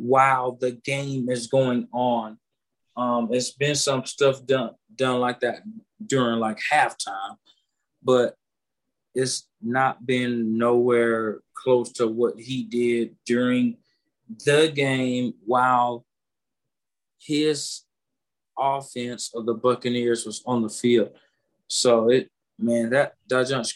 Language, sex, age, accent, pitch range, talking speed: English, male, 20-39, American, 115-130 Hz, 120 wpm